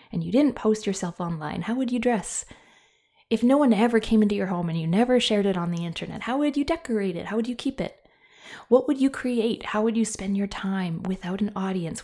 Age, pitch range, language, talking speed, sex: 20-39, 180-230 Hz, English, 245 wpm, female